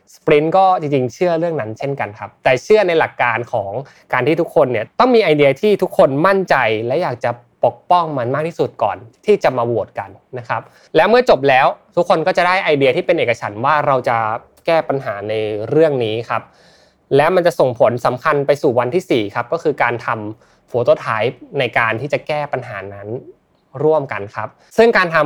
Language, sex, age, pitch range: Thai, male, 20-39, 120-165 Hz